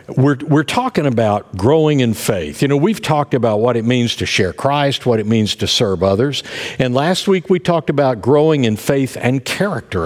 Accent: American